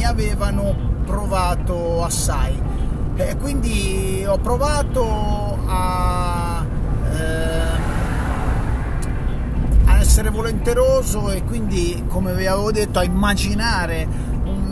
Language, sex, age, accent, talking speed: Italian, male, 30-49, native, 90 wpm